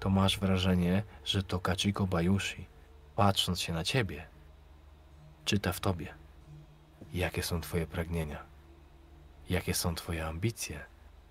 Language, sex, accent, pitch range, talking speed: Polish, male, native, 75-100 Hz, 115 wpm